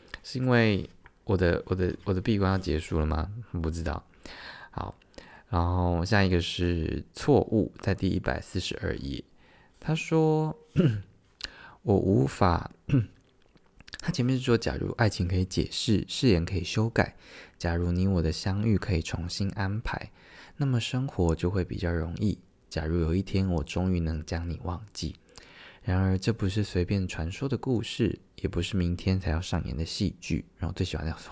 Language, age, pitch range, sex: Chinese, 20-39, 85-105 Hz, male